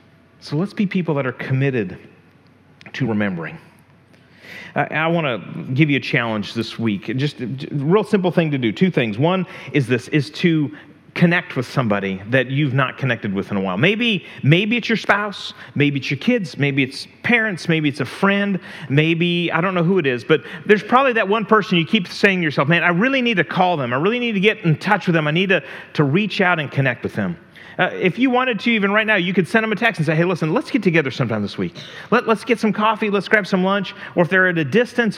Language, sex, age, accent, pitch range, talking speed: English, male, 40-59, American, 145-200 Hz, 245 wpm